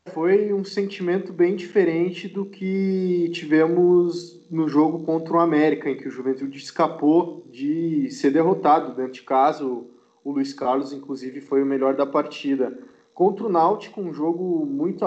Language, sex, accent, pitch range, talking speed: Portuguese, male, Brazilian, 140-175 Hz, 155 wpm